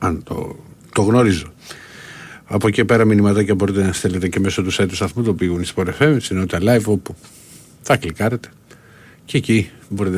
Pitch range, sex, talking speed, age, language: 95-120 Hz, male, 165 wpm, 50-69, Greek